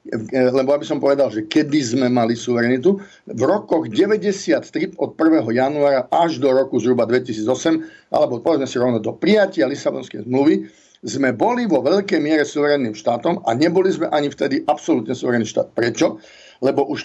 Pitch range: 125-170 Hz